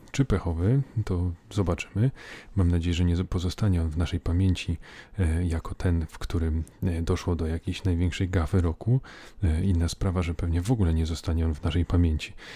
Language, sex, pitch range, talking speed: Polish, male, 85-95 Hz, 165 wpm